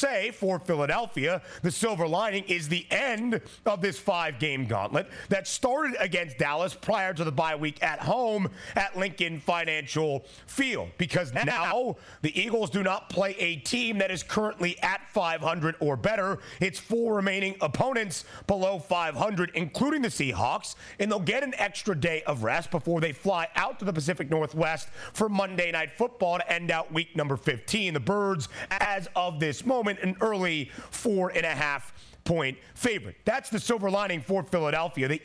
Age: 30-49